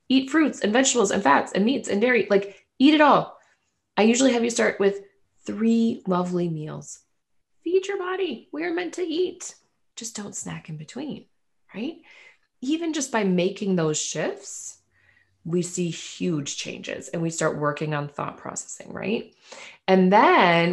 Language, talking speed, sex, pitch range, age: English, 165 wpm, female, 155-210 Hz, 20-39